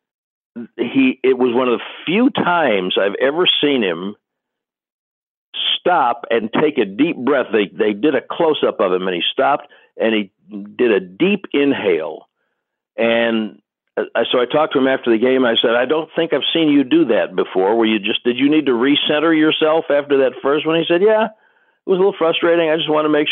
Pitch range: 120-180 Hz